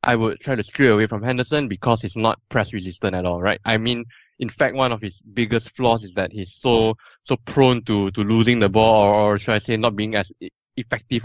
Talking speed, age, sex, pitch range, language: 240 wpm, 20-39, male, 105-120 Hz, English